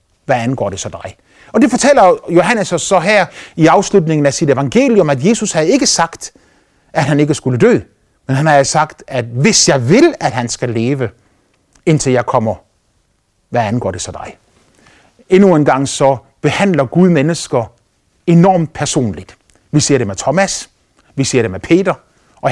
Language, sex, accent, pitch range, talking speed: Danish, male, native, 105-155 Hz, 175 wpm